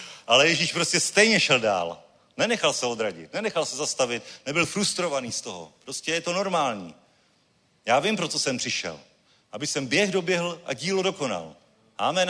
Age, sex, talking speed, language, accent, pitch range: 40-59, male, 165 wpm, Czech, native, 110-170 Hz